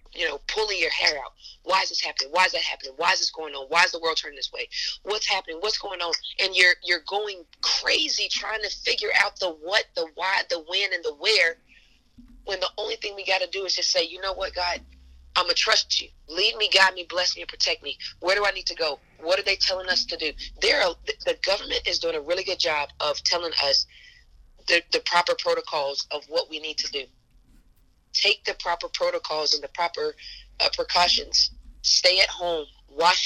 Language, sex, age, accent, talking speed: English, female, 40-59, American, 225 wpm